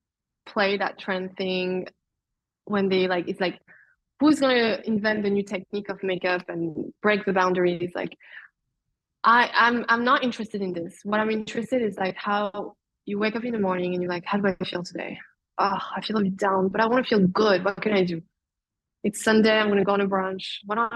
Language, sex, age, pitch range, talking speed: English, female, 20-39, 185-215 Hz, 220 wpm